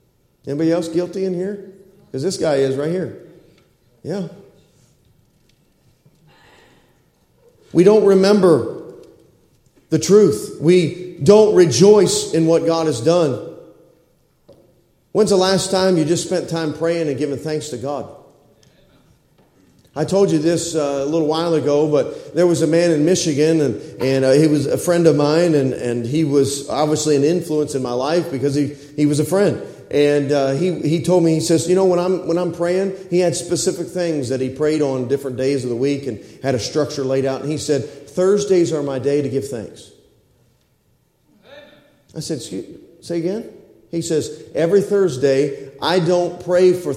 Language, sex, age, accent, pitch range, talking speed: English, male, 40-59, American, 140-175 Hz, 175 wpm